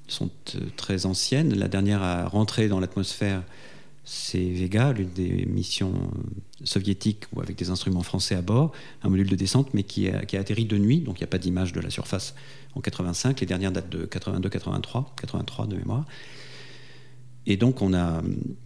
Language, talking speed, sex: French, 185 wpm, male